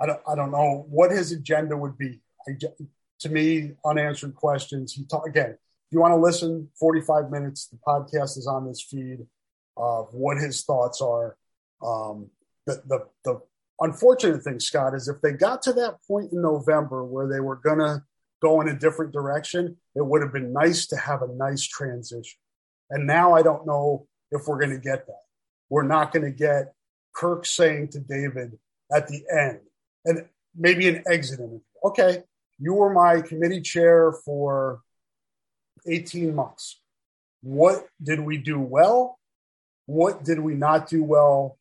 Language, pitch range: English, 140-170 Hz